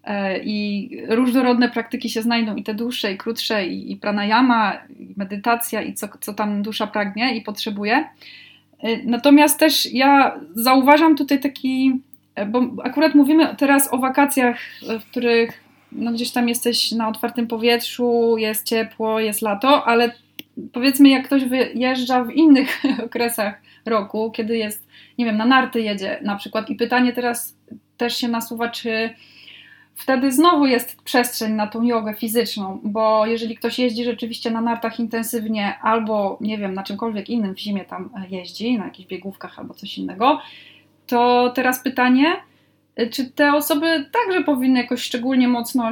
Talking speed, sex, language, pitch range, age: 150 wpm, female, Polish, 215-260 Hz, 20-39